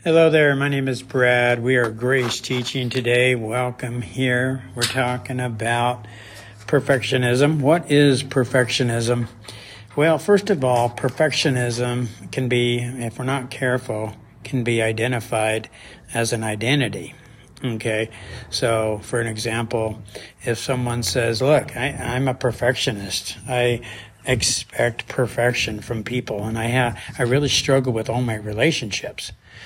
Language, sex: English, male